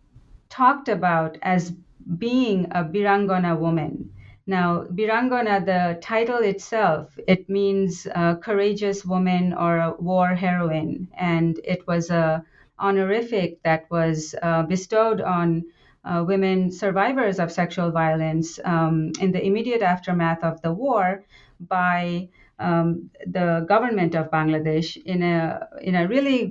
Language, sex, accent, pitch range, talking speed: English, female, Indian, 165-200 Hz, 125 wpm